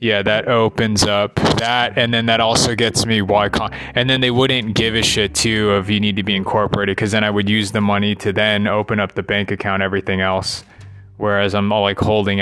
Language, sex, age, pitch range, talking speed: English, male, 20-39, 100-115 Hz, 230 wpm